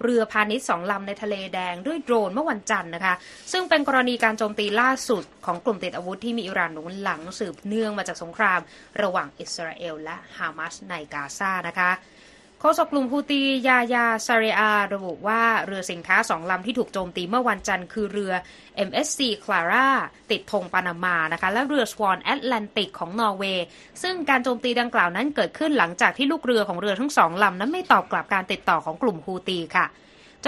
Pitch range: 185-240 Hz